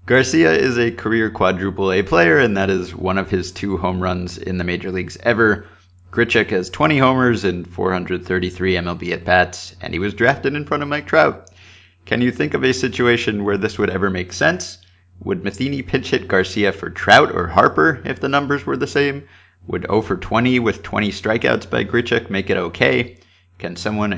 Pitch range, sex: 90-110 Hz, male